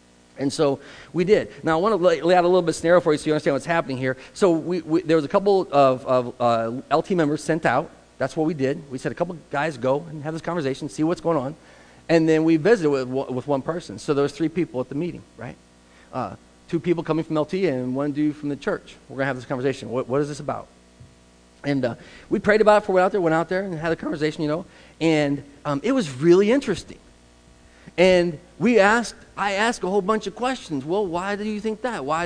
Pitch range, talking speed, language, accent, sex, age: 135-185 Hz, 255 wpm, English, American, male, 40-59